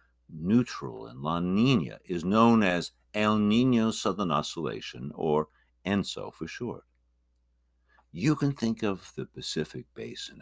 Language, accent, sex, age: English, American, male, 60-79